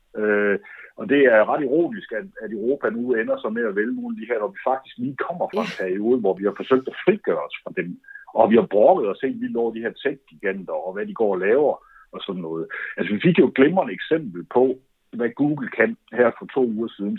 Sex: male